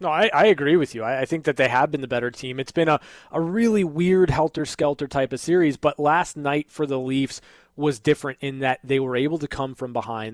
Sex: male